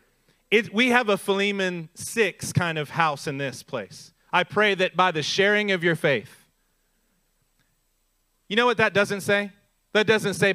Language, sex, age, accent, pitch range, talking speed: English, male, 40-59, American, 155-215 Hz, 165 wpm